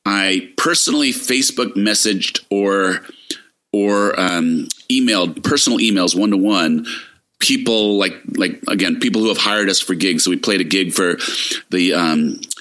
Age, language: 30-49, English